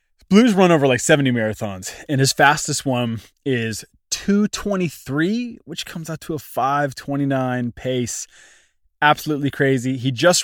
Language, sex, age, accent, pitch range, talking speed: English, male, 20-39, American, 120-150 Hz, 155 wpm